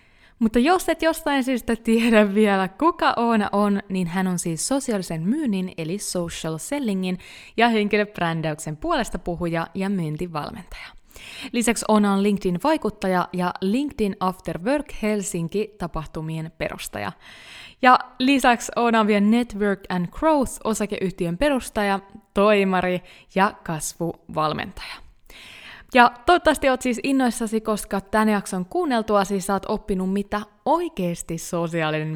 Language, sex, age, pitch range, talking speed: Finnish, female, 20-39, 175-230 Hz, 115 wpm